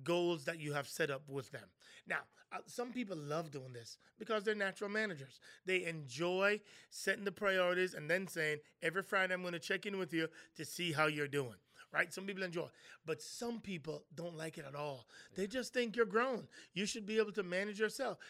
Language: English